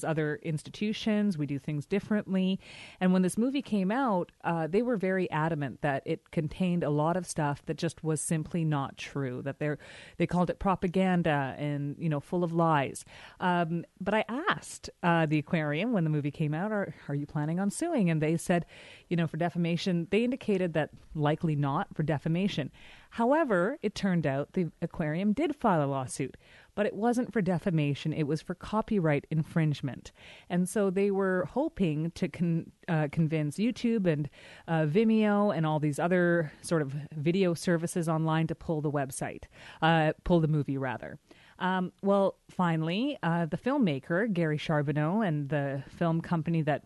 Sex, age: female, 30-49